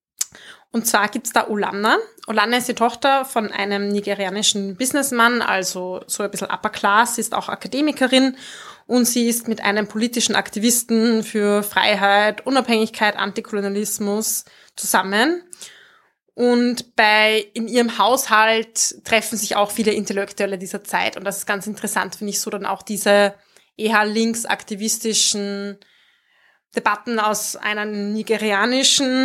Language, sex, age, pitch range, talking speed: German, female, 20-39, 200-230 Hz, 130 wpm